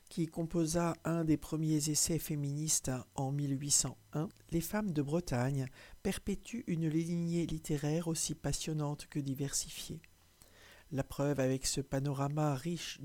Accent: French